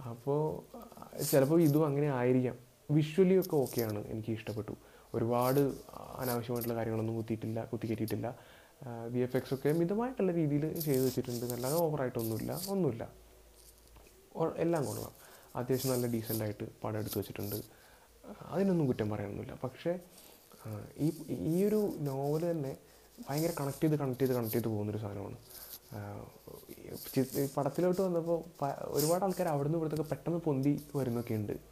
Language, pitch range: Malayalam, 115-165 Hz